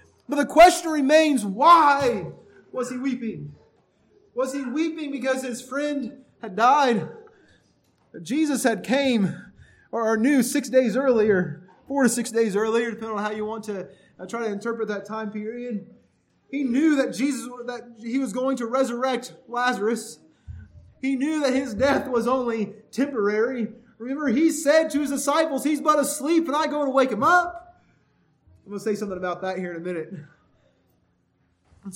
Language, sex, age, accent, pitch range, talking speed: English, male, 30-49, American, 205-260 Hz, 160 wpm